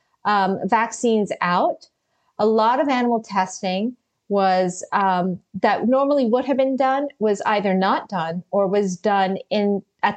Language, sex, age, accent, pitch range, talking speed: English, female, 40-59, American, 195-260 Hz, 150 wpm